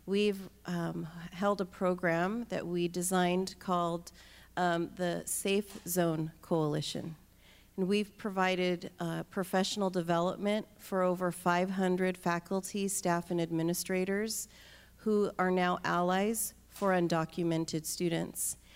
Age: 40-59